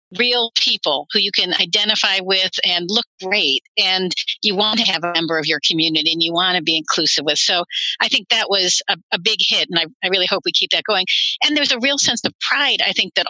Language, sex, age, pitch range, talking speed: English, female, 50-69, 175-220 Hz, 250 wpm